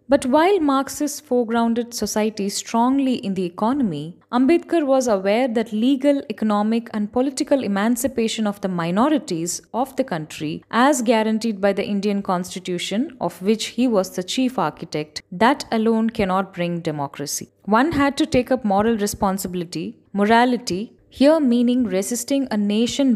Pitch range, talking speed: 190-250 Hz, 145 wpm